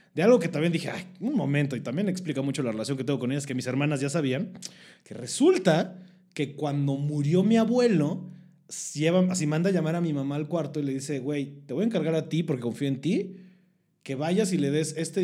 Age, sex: 30-49, male